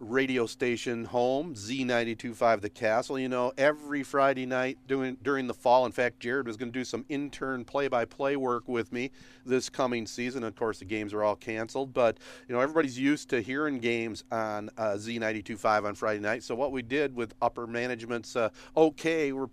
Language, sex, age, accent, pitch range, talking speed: English, male, 40-59, American, 115-135 Hz, 190 wpm